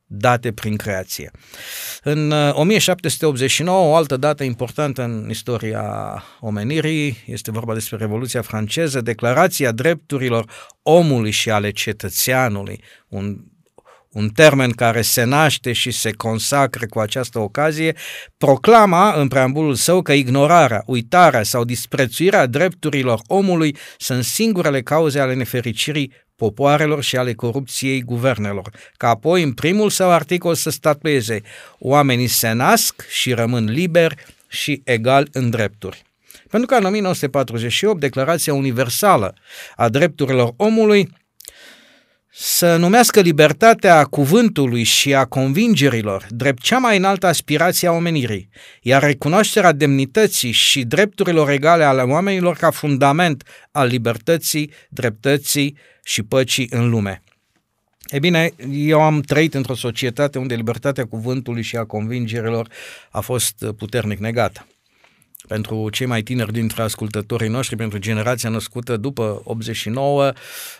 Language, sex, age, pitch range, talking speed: Romanian, male, 50-69, 115-155 Hz, 120 wpm